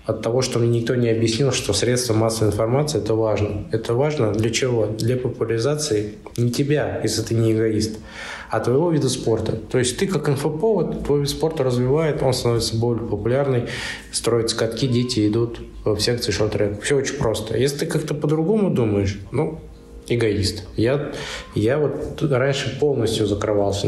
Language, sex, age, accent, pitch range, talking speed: Russian, male, 20-39, native, 110-130 Hz, 165 wpm